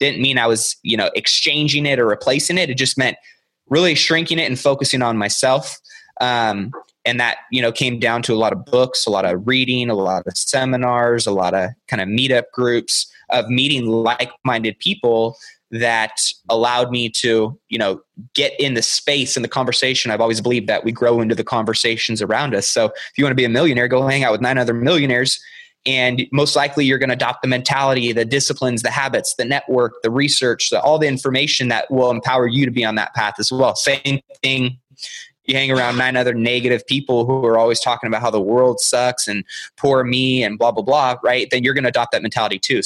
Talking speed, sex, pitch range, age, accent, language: 220 wpm, male, 115-135 Hz, 20-39, American, English